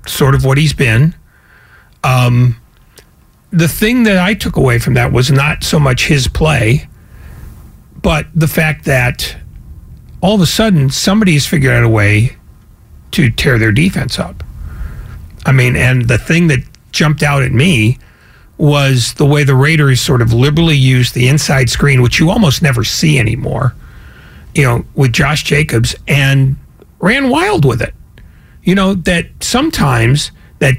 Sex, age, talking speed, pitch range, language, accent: male, 40-59, 160 wpm, 125-175 Hz, English, American